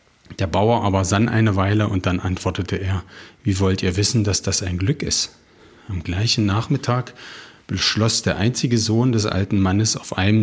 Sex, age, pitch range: male, 40-59, 95-110 Hz